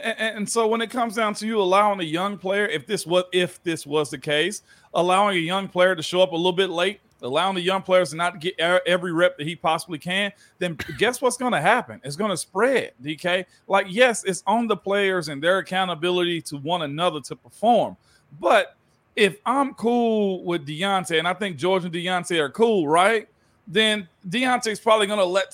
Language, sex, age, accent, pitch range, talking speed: English, male, 40-59, American, 175-215 Hz, 205 wpm